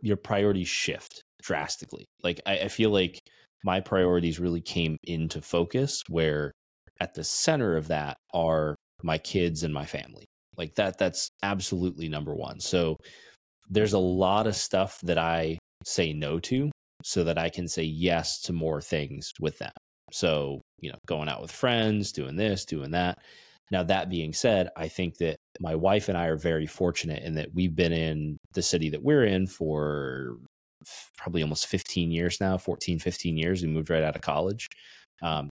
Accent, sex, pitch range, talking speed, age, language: American, male, 80-95 Hz, 180 wpm, 30-49, English